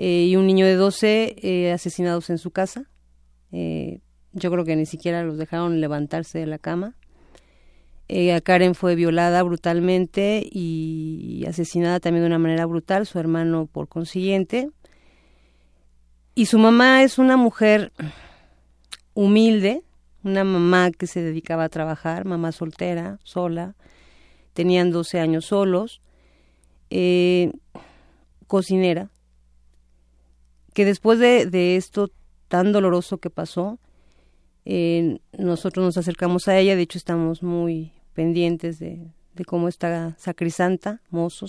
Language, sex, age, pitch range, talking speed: Spanish, female, 40-59, 165-190 Hz, 130 wpm